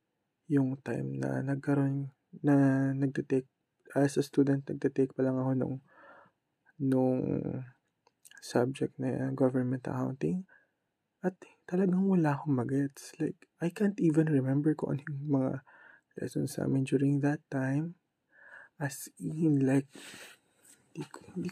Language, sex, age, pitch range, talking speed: Filipino, male, 20-39, 130-155 Hz, 120 wpm